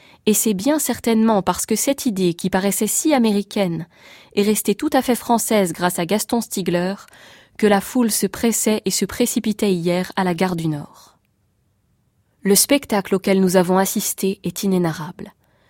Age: 20-39